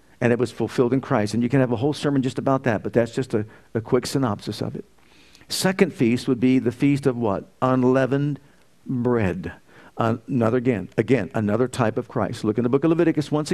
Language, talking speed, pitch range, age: English, 215 wpm, 120-150 Hz, 50-69